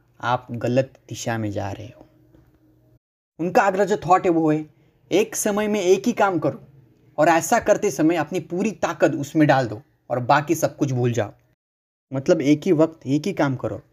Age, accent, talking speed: 30-49, native, 195 wpm